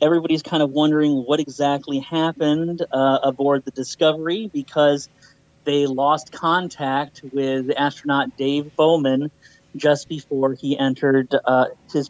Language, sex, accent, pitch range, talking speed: English, male, American, 135-160 Hz, 125 wpm